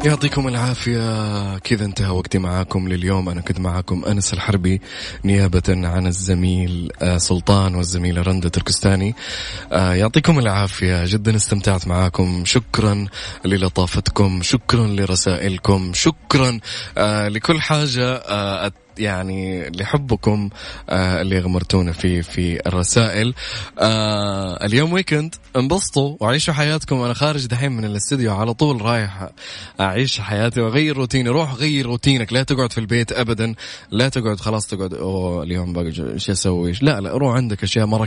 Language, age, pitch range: English, 20-39, 95-125 Hz